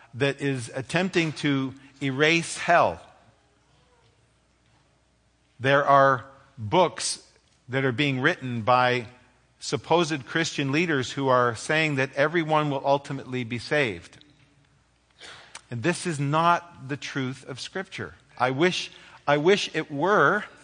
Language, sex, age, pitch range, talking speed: English, male, 50-69, 125-155 Hz, 115 wpm